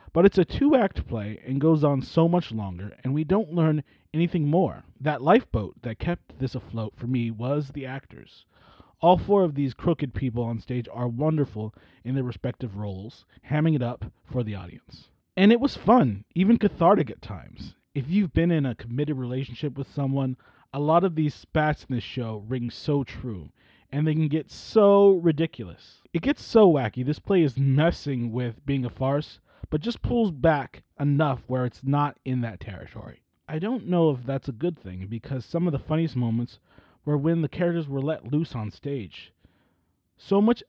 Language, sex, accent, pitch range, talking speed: English, male, American, 120-160 Hz, 190 wpm